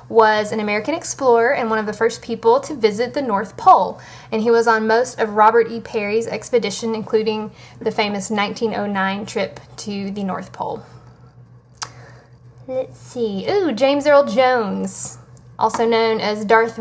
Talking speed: 155 wpm